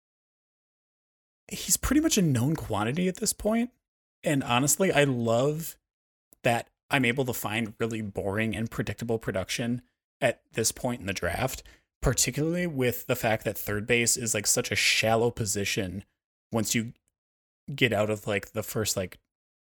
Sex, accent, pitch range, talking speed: male, American, 100-120 Hz, 155 wpm